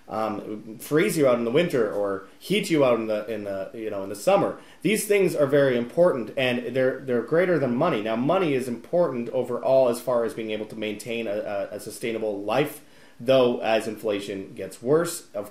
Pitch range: 110-130 Hz